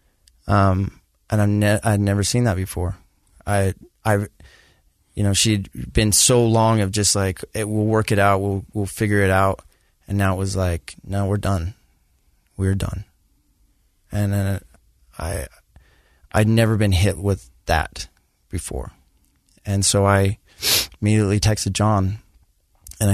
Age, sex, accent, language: 20-39, male, American, English